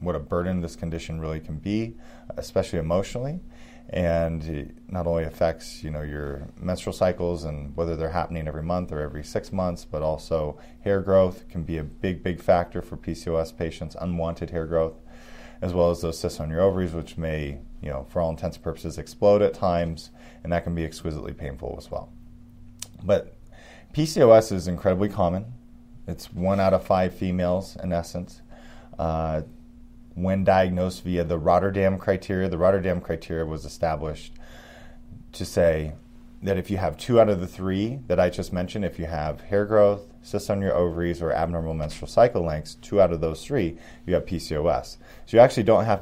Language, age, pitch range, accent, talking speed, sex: English, 20-39, 80-95 Hz, American, 185 wpm, male